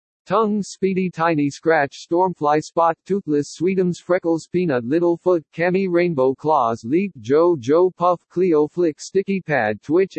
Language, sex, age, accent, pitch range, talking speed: English, male, 50-69, American, 135-175 Hz, 140 wpm